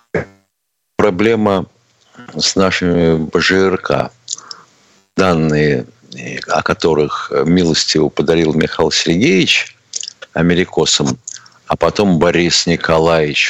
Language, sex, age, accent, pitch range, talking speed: Russian, male, 50-69, native, 80-100 Hz, 70 wpm